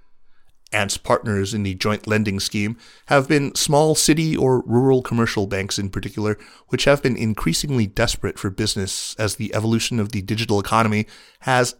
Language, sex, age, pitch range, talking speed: English, male, 30-49, 100-130 Hz, 165 wpm